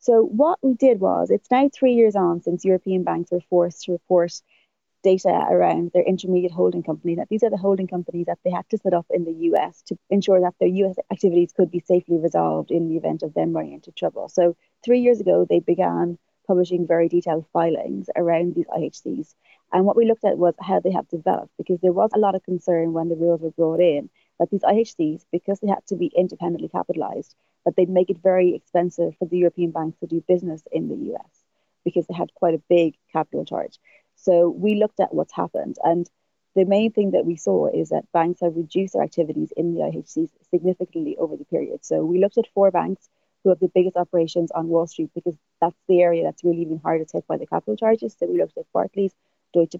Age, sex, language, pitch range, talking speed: 30-49, female, English, 170-195 Hz, 225 wpm